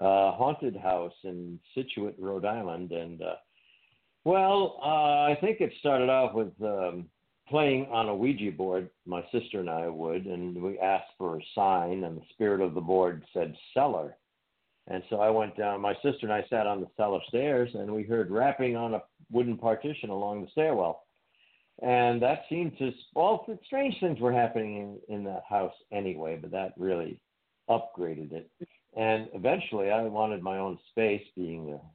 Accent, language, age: American, English, 60-79